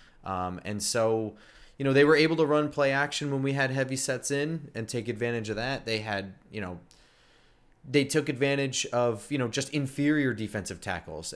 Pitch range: 105-135 Hz